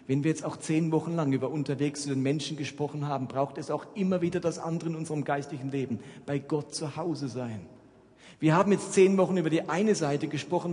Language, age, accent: German, 40-59, German